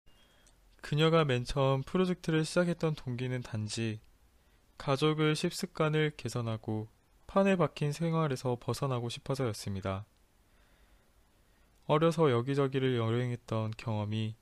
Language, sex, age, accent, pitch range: Korean, male, 20-39, native, 105-145 Hz